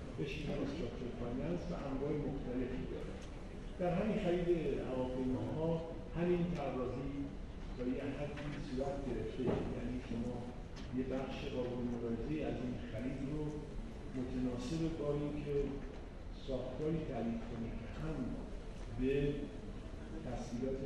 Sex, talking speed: male, 100 wpm